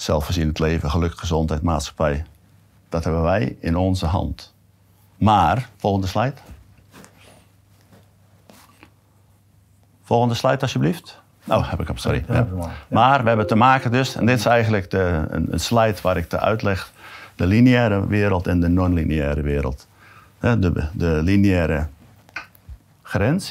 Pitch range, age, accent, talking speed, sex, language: 85-110 Hz, 50-69, Dutch, 135 wpm, male, Dutch